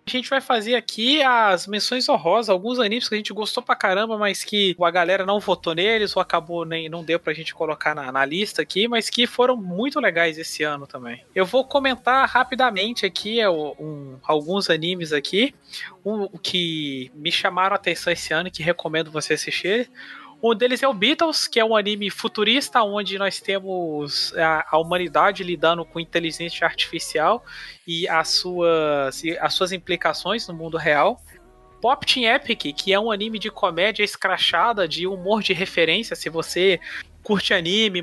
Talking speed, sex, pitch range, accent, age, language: 175 wpm, male, 165-215 Hz, Brazilian, 20-39, Portuguese